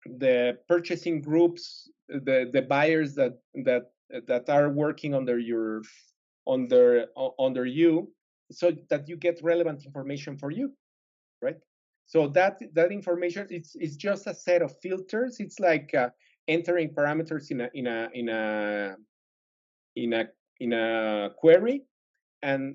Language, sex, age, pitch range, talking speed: English, male, 30-49, 135-180 Hz, 140 wpm